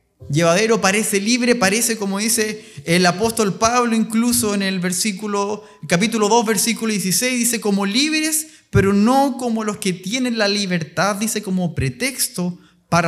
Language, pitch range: Spanish, 175-230 Hz